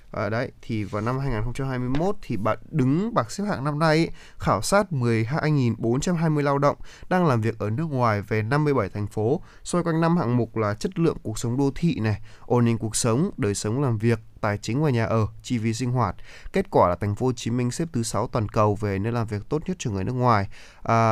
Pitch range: 110-140 Hz